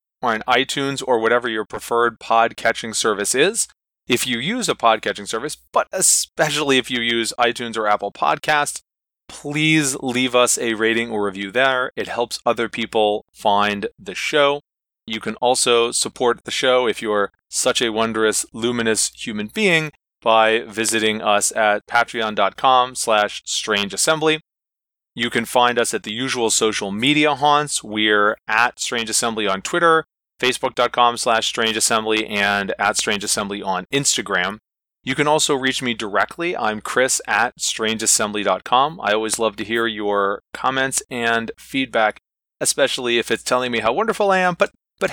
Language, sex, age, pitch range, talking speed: English, male, 30-49, 110-140 Hz, 150 wpm